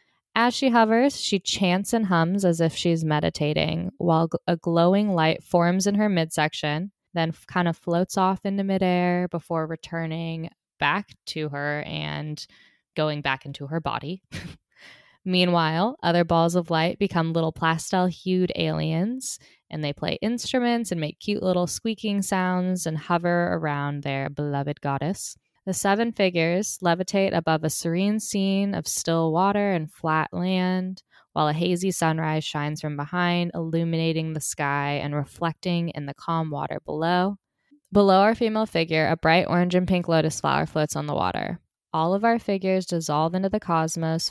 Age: 20-39